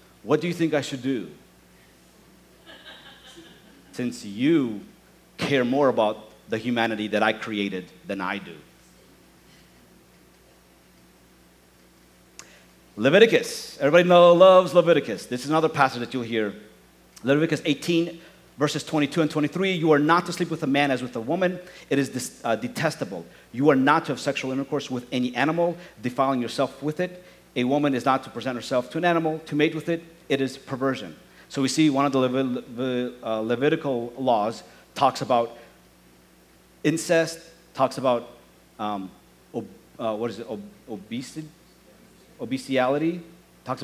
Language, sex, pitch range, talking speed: English, male, 120-155 Hz, 145 wpm